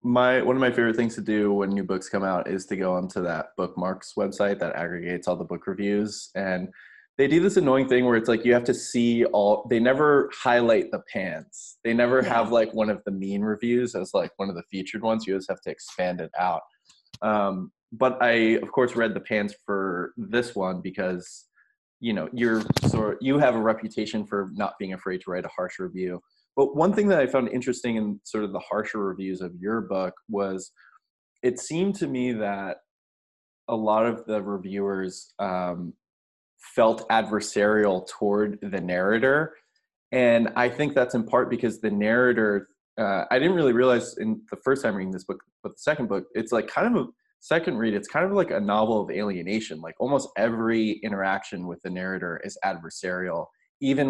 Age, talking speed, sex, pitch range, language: 20-39, 200 wpm, male, 95-120 Hz, English